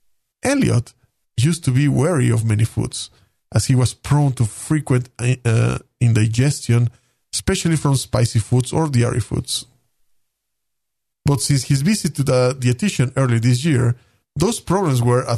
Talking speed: 140 wpm